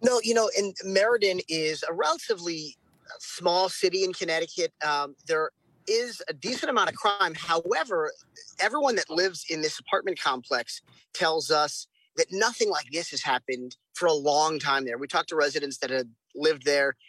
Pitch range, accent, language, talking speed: 135-175 Hz, American, English, 170 wpm